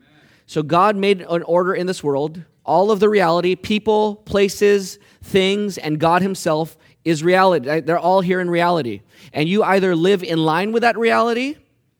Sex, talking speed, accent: male, 170 wpm, American